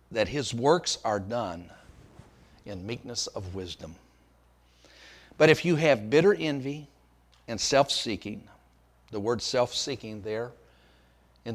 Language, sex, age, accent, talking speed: English, male, 60-79, American, 115 wpm